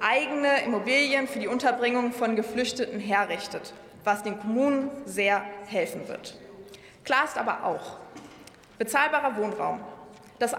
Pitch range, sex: 210-275 Hz, female